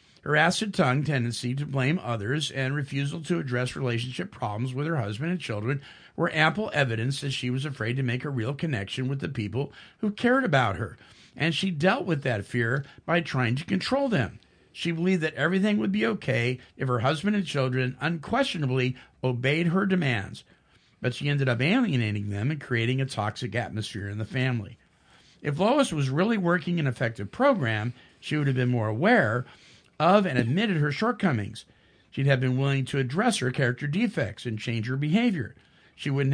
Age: 50-69